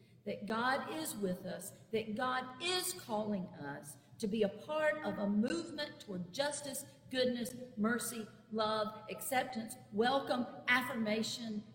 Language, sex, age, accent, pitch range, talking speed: English, female, 50-69, American, 165-255 Hz, 130 wpm